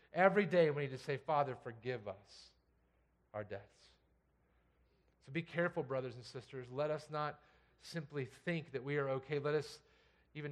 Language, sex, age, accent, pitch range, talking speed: English, male, 40-59, American, 115-190 Hz, 165 wpm